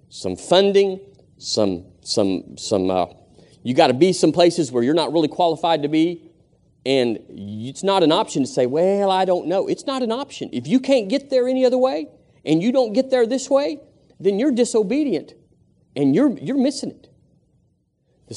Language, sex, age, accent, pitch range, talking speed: English, male, 40-59, American, 130-200 Hz, 190 wpm